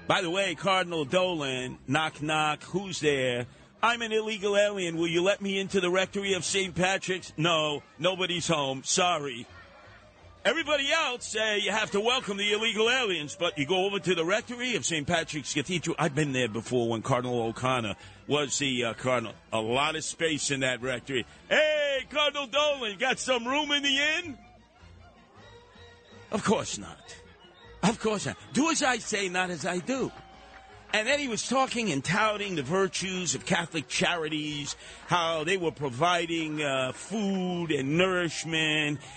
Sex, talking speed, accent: male, 165 wpm, American